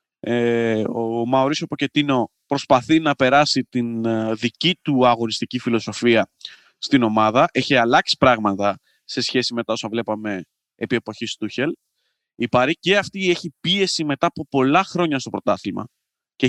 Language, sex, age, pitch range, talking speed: Greek, male, 20-39, 115-155 Hz, 140 wpm